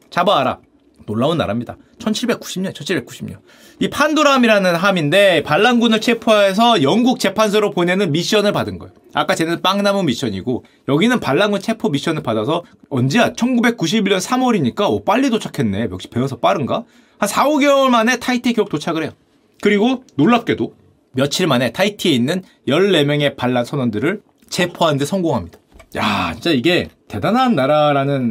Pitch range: 150-240 Hz